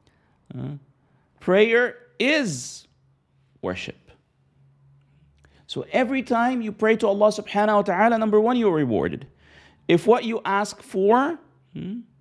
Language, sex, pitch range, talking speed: English, male, 160-220 Hz, 125 wpm